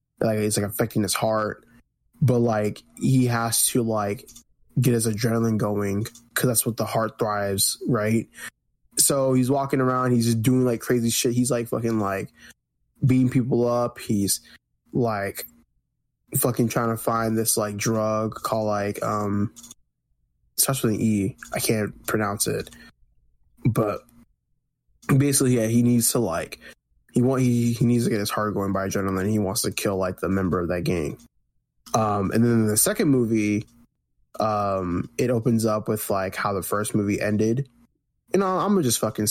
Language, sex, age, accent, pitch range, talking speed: English, male, 10-29, American, 105-120 Hz, 175 wpm